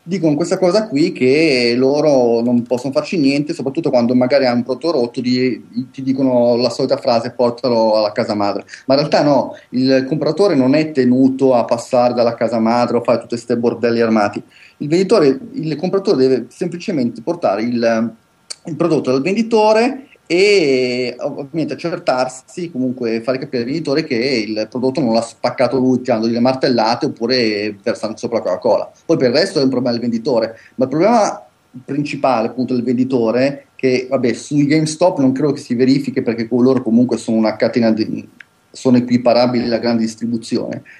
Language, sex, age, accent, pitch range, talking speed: Italian, male, 30-49, native, 120-145 Hz, 175 wpm